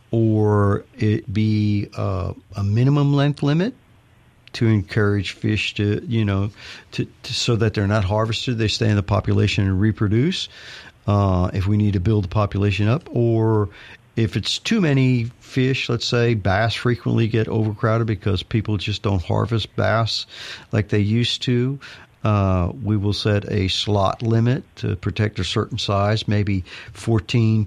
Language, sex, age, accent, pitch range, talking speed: English, male, 50-69, American, 105-120 Hz, 160 wpm